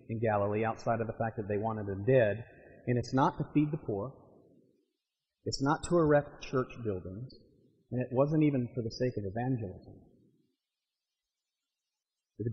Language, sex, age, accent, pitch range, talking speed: English, male, 40-59, American, 115-170 Hz, 165 wpm